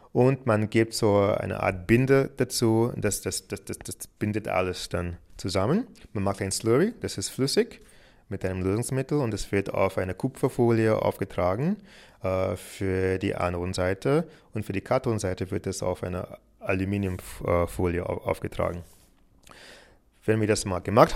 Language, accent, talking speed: German, German, 150 wpm